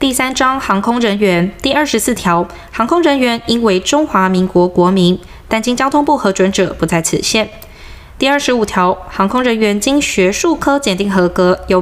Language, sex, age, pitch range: Chinese, female, 20-39, 185-255 Hz